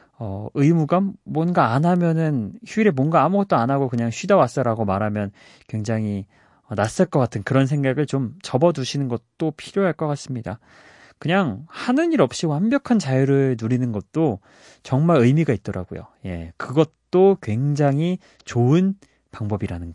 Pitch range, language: 105-165 Hz, Korean